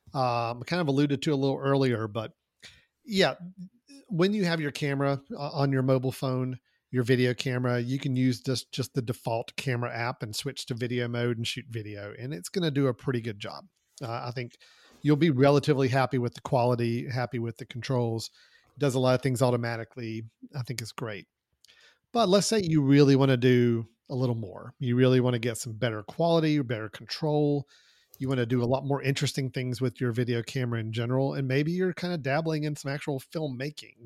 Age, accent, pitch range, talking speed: 40-59, American, 120-140 Hz, 210 wpm